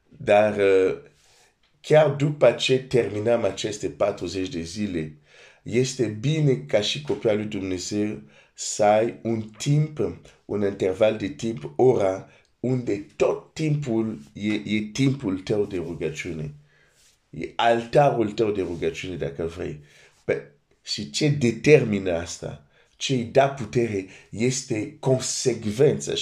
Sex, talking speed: male, 120 wpm